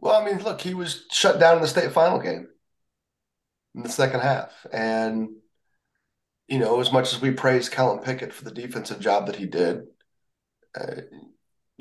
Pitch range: 110-135 Hz